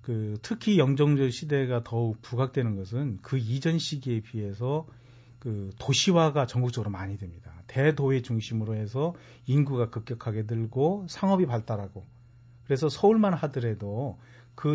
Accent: native